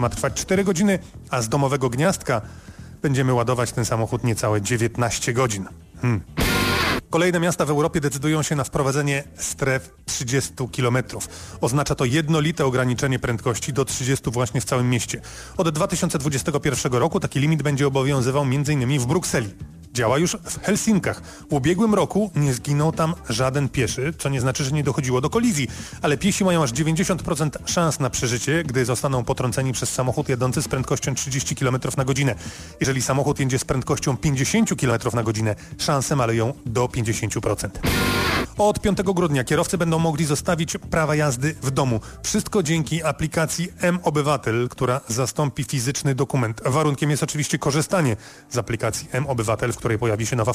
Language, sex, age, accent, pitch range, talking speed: Polish, male, 30-49, native, 125-155 Hz, 155 wpm